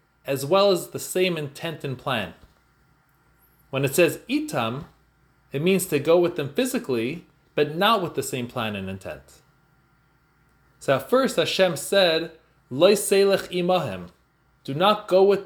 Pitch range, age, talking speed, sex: 145-190 Hz, 30-49, 145 wpm, male